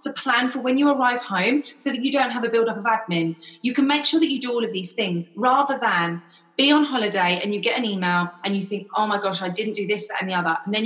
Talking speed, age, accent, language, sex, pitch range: 280 wpm, 20-39, British, English, female, 195-260 Hz